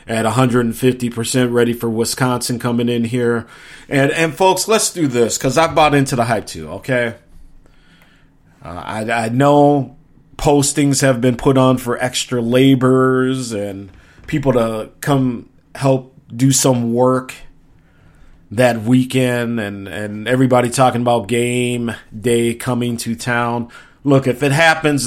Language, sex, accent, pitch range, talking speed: English, male, American, 115-130 Hz, 140 wpm